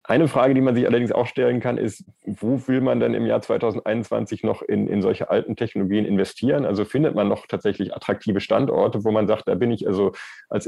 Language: German